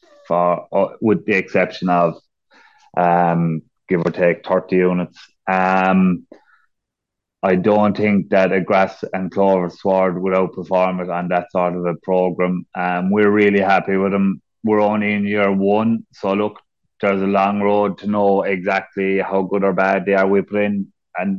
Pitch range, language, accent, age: 85-95 Hz, English, Irish, 30-49